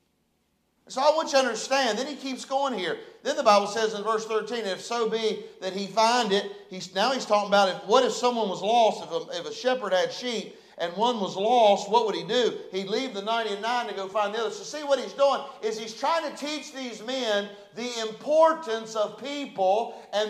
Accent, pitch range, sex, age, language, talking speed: American, 200-255 Hz, male, 50-69, English, 220 wpm